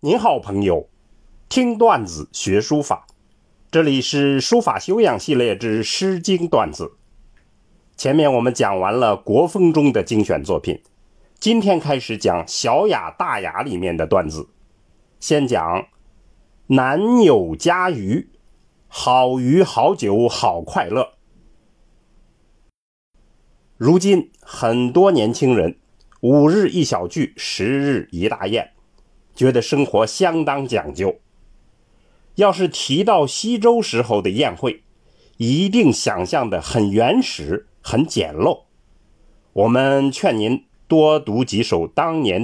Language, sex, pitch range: Chinese, male, 120-185 Hz